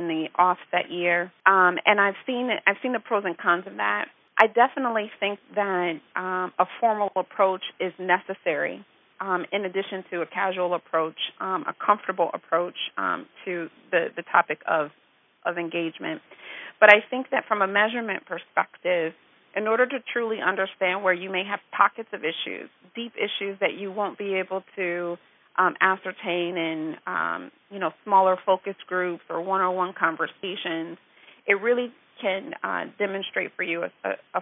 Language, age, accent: English, 40-59, American